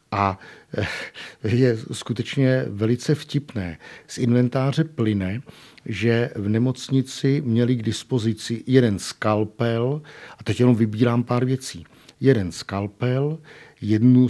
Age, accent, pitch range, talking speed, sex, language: 50-69, native, 105-130 Hz, 105 wpm, male, Czech